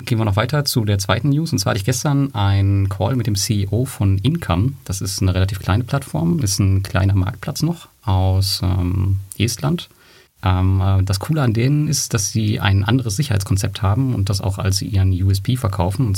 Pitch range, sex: 95-125 Hz, male